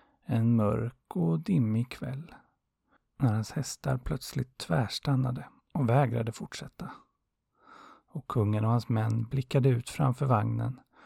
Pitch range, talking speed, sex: 115-140 Hz, 120 wpm, male